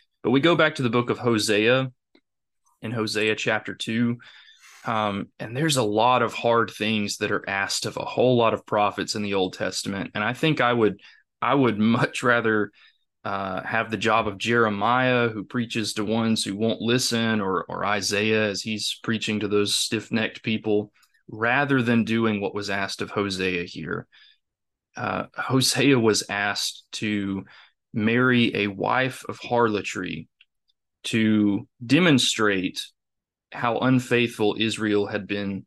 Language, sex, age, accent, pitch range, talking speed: English, male, 20-39, American, 105-120 Hz, 155 wpm